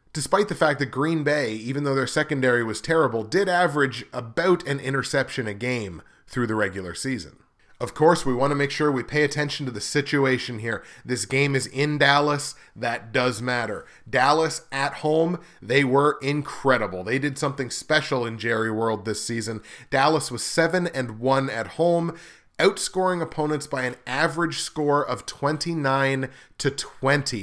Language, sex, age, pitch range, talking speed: English, male, 30-49, 120-150 Hz, 165 wpm